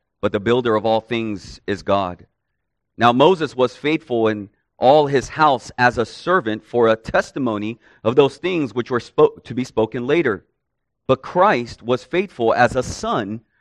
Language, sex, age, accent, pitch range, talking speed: English, male, 40-59, American, 100-120 Hz, 170 wpm